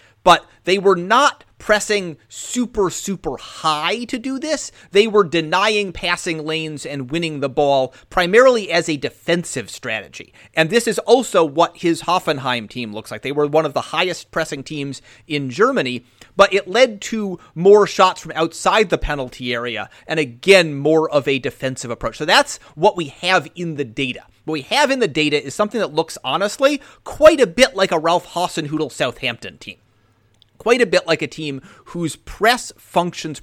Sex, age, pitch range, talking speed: male, 30-49, 140-195 Hz, 180 wpm